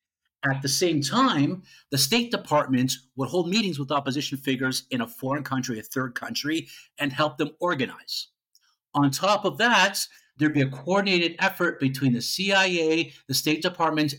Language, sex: English, male